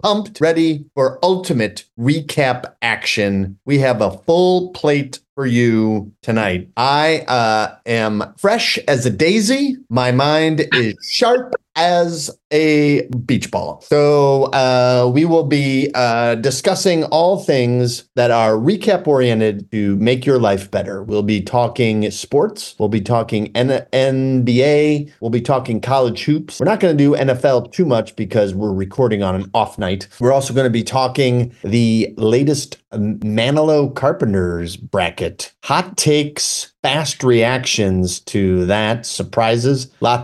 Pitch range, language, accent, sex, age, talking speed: 110-145 Hz, English, American, male, 40-59, 140 wpm